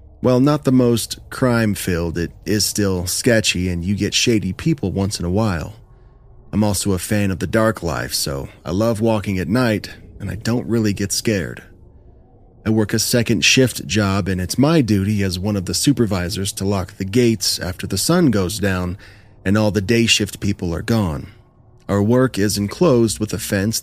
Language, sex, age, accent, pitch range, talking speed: English, male, 30-49, American, 90-110 Hz, 195 wpm